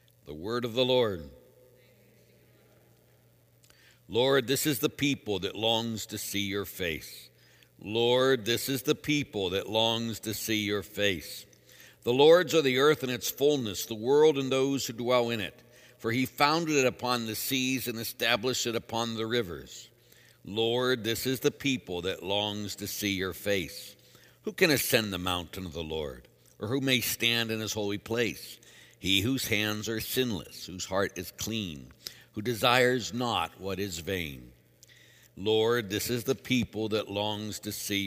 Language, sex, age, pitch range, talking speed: English, male, 60-79, 95-125 Hz, 170 wpm